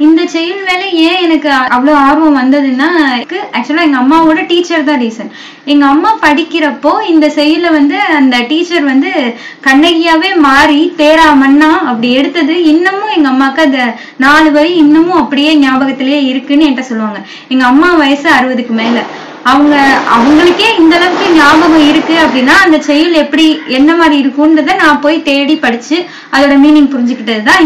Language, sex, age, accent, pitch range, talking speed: Tamil, female, 20-39, native, 270-325 Hz, 145 wpm